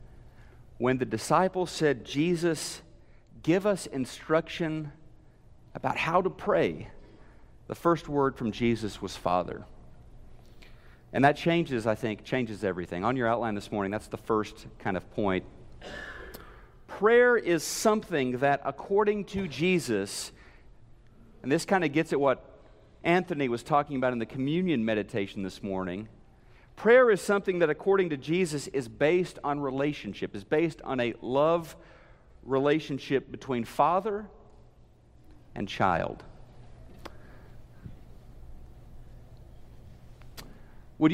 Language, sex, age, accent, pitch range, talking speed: English, male, 50-69, American, 115-170 Hz, 120 wpm